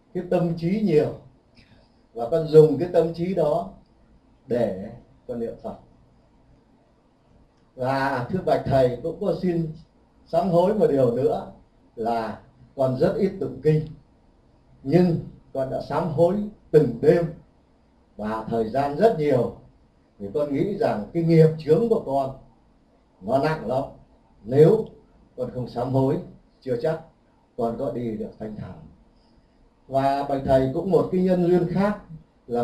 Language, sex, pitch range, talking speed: Vietnamese, male, 125-170 Hz, 145 wpm